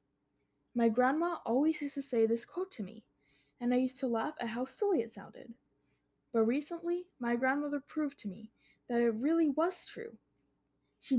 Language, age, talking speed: English, 10-29, 175 wpm